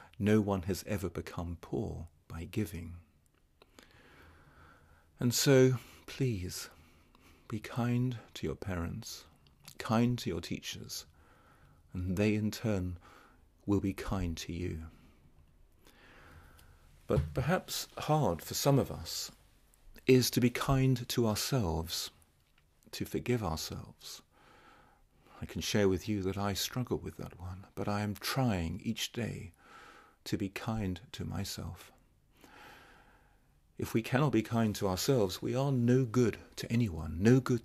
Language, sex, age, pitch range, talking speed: English, male, 40-59, 85-120 Hz, 130 wpm